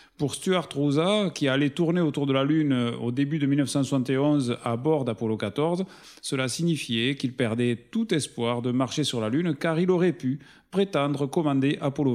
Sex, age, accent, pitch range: male, 40-59, French, 125-160 Hz